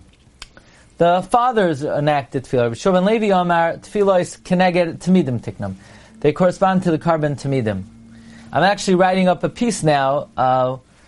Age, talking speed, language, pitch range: 30-49, 120 wpm, English, 145-185 Hz